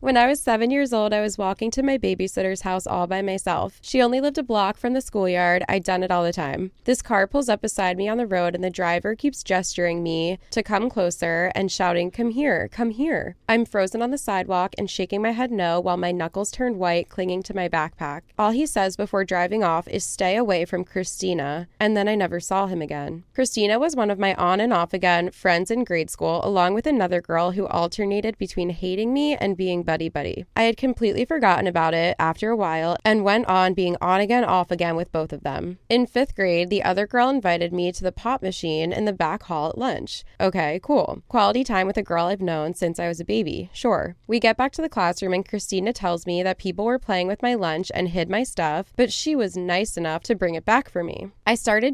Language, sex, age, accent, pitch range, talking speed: English, female, 20-39, American, 175-225 Hz, 235 wpm